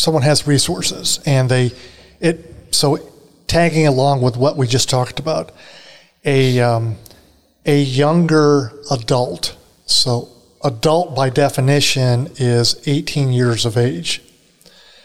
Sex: male